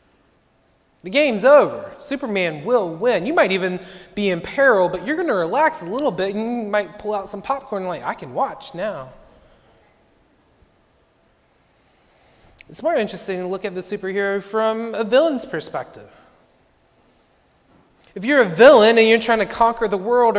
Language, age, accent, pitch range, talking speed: English, 30-49, American, 180-240 Hz, 165 wpm